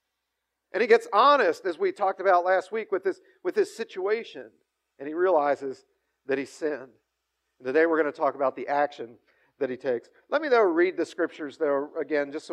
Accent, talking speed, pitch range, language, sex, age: American, 205 wpm, 150-240 Hz, English, male, 50-69